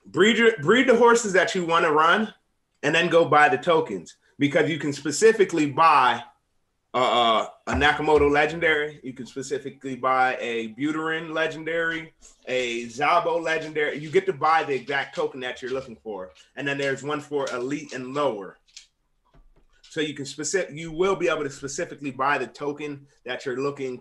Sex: male